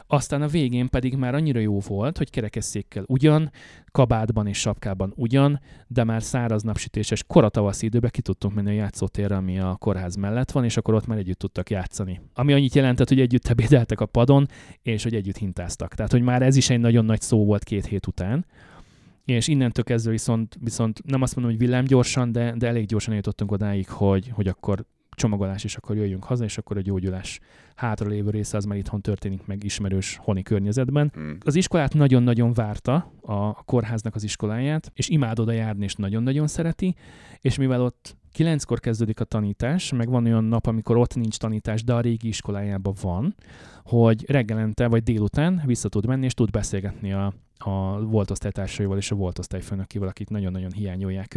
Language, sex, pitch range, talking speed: Hungarian, male, 100-125 Hz, 180 wpm